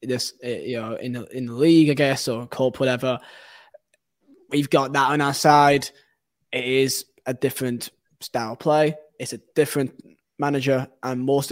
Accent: British